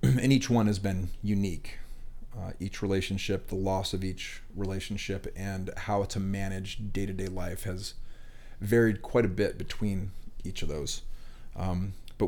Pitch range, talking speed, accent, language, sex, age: 95-105 Hz, 150 wpm, American, English, male, 30-49